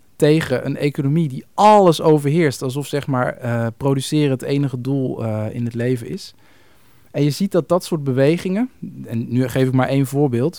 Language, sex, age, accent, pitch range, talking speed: Dutch, male, 50-69, Dutch, 125-150 Hz, 175 wpm